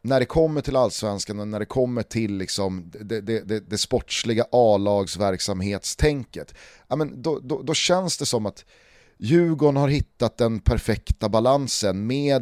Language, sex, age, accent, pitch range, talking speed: Swedish, male, 30-49, native, 105-140 Hz, 150 wpm